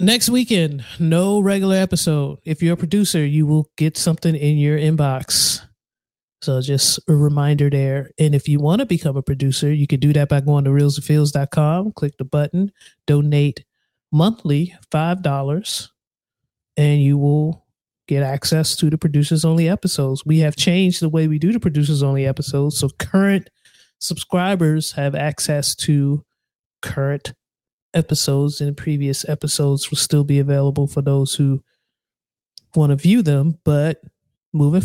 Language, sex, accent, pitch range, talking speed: English, male, American, 145-170 Hz, 150 wpm